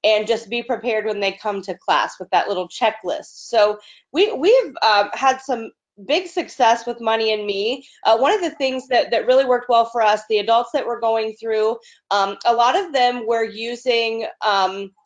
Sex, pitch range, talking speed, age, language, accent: female, 220-270 Hz, 205 wpm, 30-49, English, American